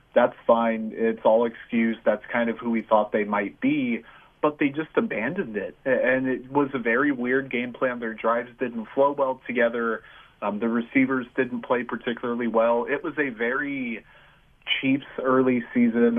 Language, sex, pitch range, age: English, male, 115-130 Hz, 30-49